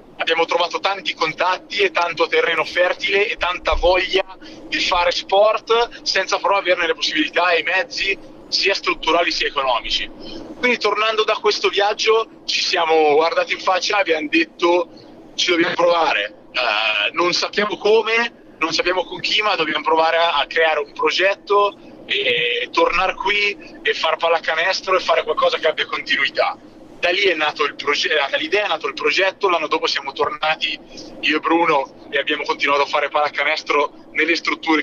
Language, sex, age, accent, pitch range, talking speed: Italian, male, 30-49, native, 160-245 Hz, 160 wpm